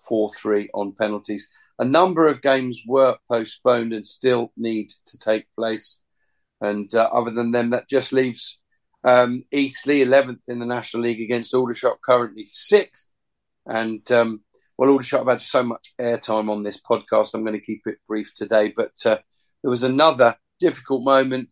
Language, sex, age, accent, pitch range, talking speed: English, male, 40-59, British, 115-130 Hz, 165 wpm